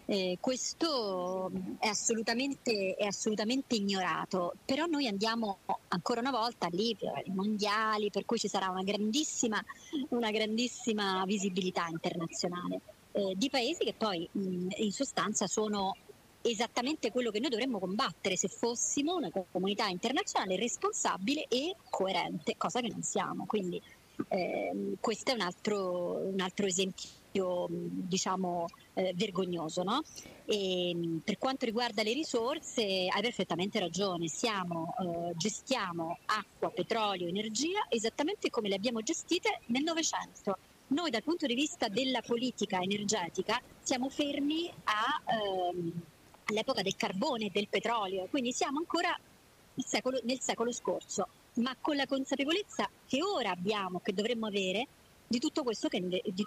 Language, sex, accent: Italian, male, native